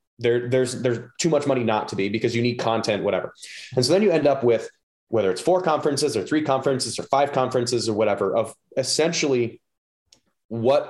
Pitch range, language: 115-145 Hz, English